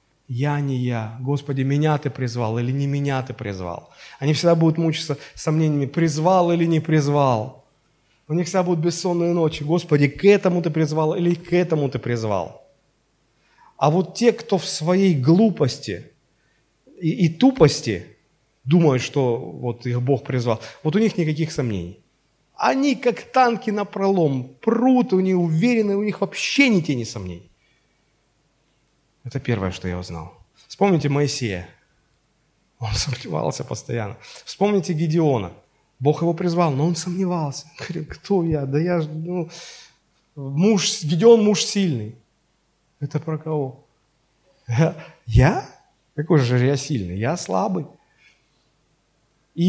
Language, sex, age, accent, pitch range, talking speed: Russian, male, 30-49, native, 130-175 Hz, 135 wpm